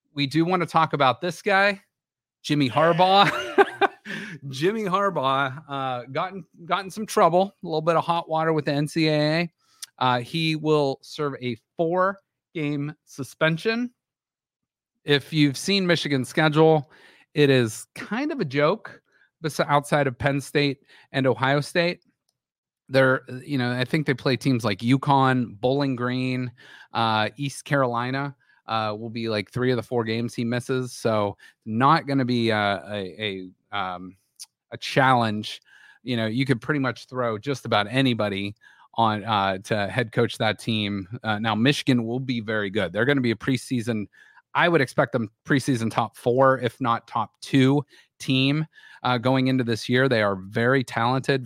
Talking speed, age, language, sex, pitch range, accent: 165 wpm, 30-49, English, male, 115-150 Hz, American